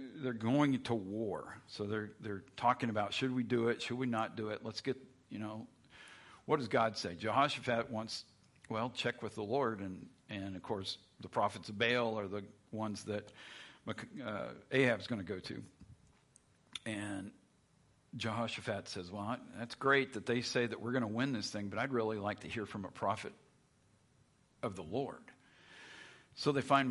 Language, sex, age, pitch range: English, male, 50-69, 105-125 Hz